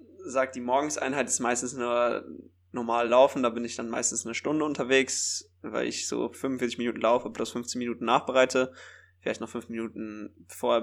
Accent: German